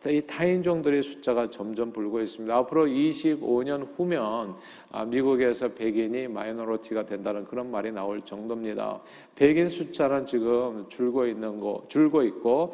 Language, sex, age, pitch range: Korean, male, 40-59, 115-145 Hz